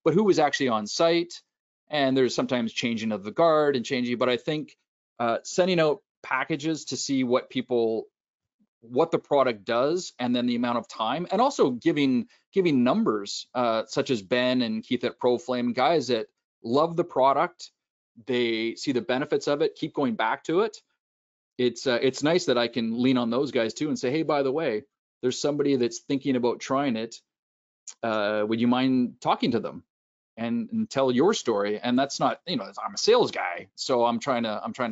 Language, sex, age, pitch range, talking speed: English, male, 30-49, 115-150 Hz, 200 wpm